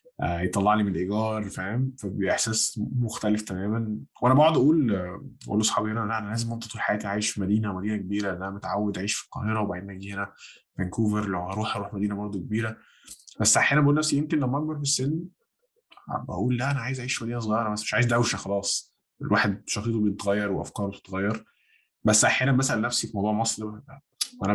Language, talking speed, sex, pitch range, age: Arabic, 185 wpm, male, 100-130 Hz, 20-39